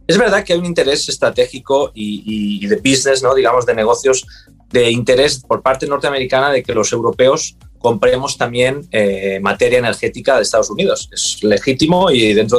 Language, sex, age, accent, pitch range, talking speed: English, male, 30-49, Spanish, 125-170 Hz, 170 wpm